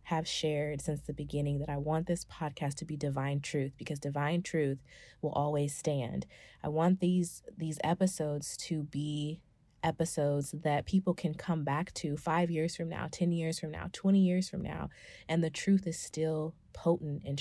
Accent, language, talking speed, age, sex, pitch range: American, English, 185 wpm, 20-39, female, 145-175 Hz